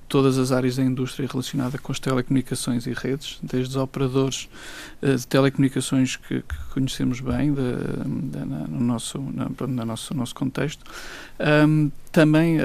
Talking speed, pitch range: 120 wpm, 130-140 Hz